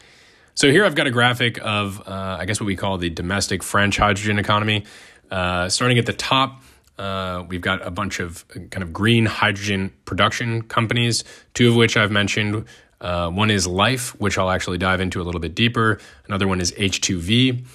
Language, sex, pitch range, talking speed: English, male, 90-110 Hz, 195 wpm